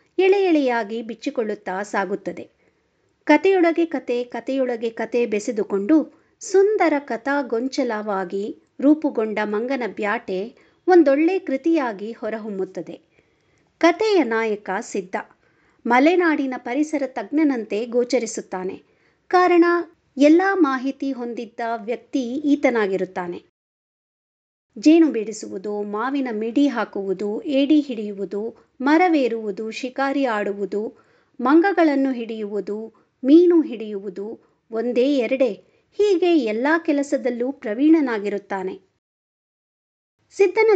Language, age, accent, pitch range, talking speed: Kannada, 50-69, native, 215-295 Hz, 75 wpm